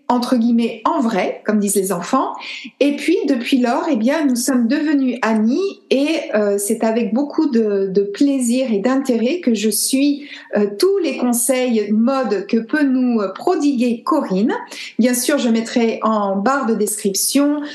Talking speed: 165 wpm